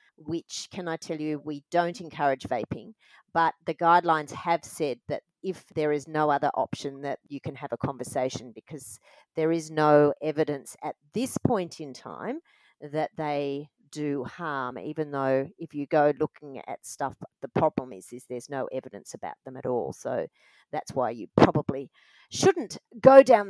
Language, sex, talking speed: English, female, 175 wpm